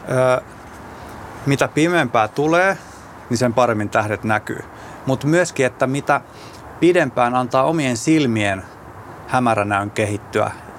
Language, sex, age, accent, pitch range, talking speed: Finnish, male, 20-39, native, 105-135 Hz, 105 wpm